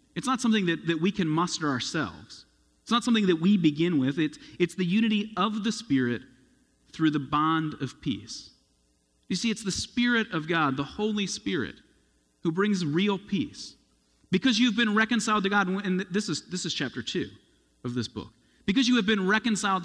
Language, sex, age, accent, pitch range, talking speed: English, male, 40-59, American, 150-220 Hz, 190 wpm